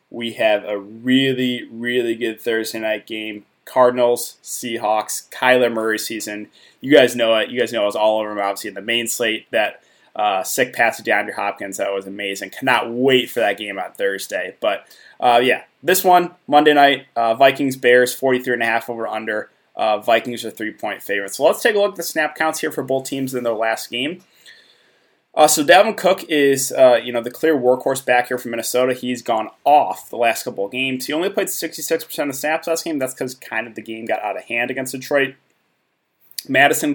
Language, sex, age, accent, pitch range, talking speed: English, male, 20-39, American, 115-150 Hz, 205 wpm